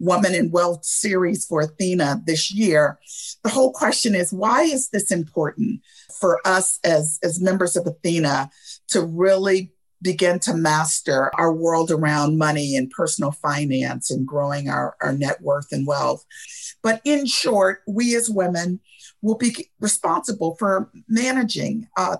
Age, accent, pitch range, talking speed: 50-69, American, 165-210 Hz, 150 wpm